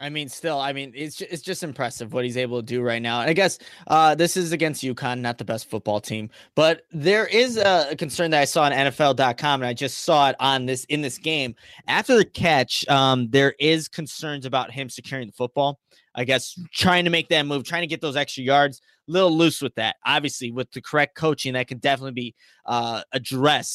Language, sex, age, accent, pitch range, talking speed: English, male, 20-39, American, 130-165 Hz, 225 wpm